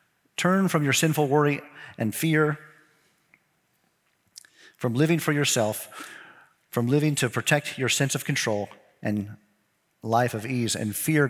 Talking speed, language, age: 135 wpm, English, 40-59